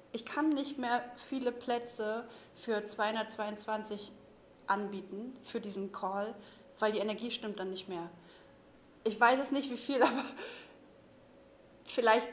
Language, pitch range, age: German, 205-255 Hz, 30-49